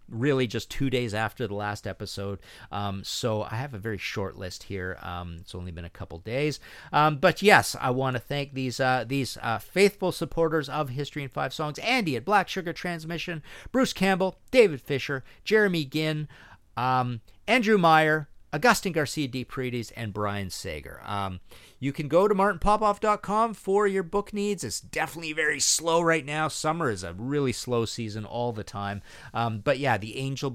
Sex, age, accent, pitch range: male, 40-59, American, 105-145 Hz